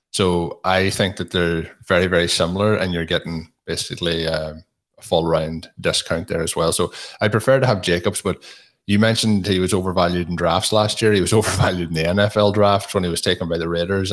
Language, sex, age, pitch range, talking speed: English, male, 20-39, 85-95 Hz, 205 wpm